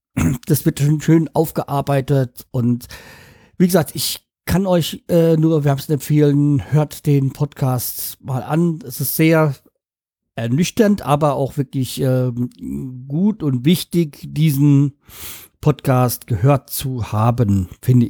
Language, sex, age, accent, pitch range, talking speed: German, male, 50-69, German, 120-150 Hz, 125 wpm